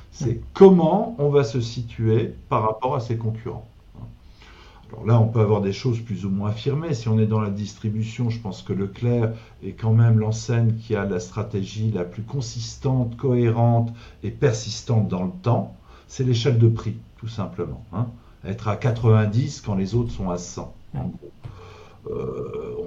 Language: French